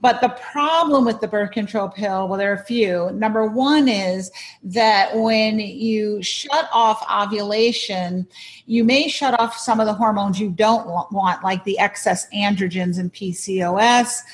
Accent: American